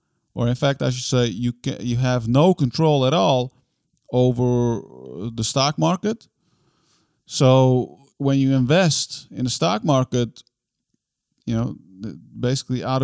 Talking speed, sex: 140 wpm, male